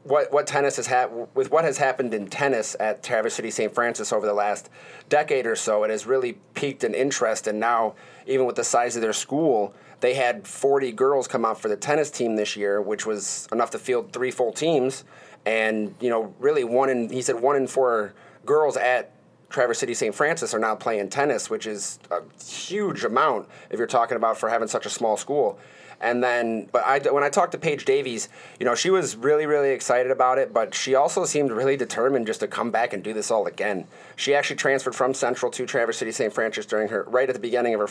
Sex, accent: male, American